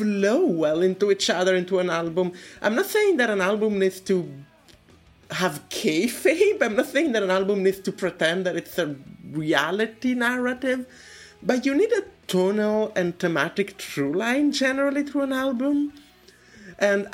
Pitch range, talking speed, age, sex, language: 160-220 Hz, 160 wpm, 20-39, male, English